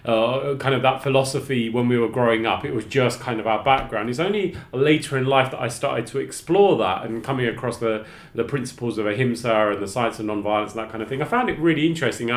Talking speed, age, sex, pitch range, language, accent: 250 wpm, 30-49, male, 130-185 Hz, English, British